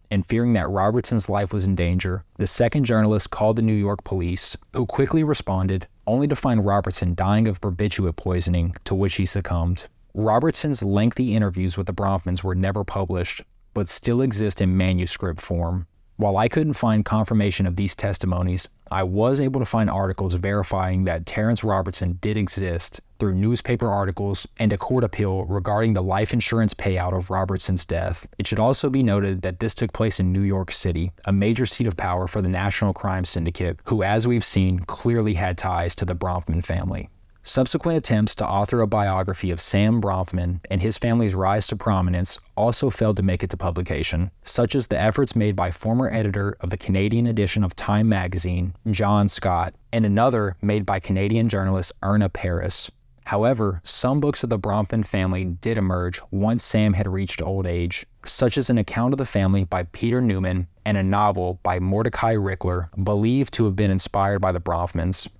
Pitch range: 90-110 Hz